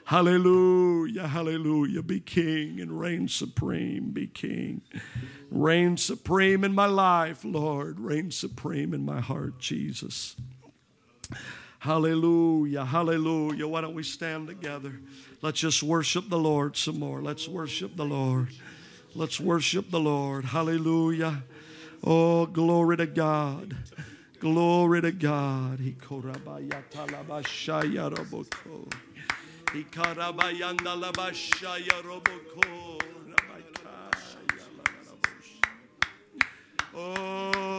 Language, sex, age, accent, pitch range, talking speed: English, male, 50-69, American, 155-195 Hz, 85 wpm